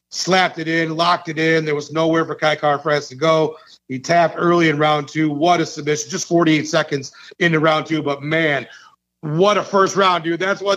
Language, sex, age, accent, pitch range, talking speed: English, male, 40-59, American, 150-180 Hz, 210 wpm